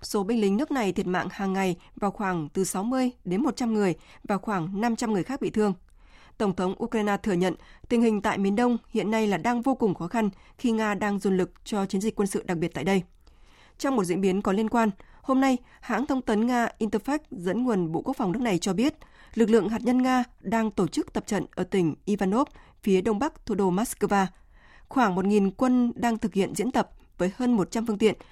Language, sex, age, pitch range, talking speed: Vietnamese, female, 20-39, 190-240 Hz, 235 wpm